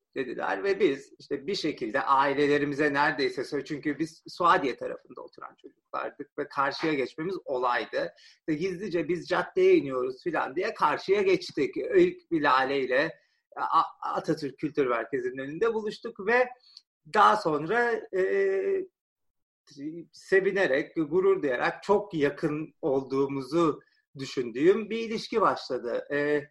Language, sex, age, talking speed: Turkish, male, 40-59, 115 wpm